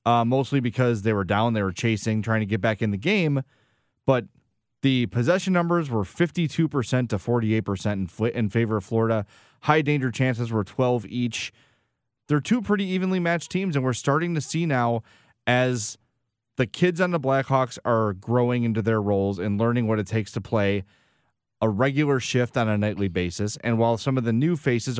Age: 30-49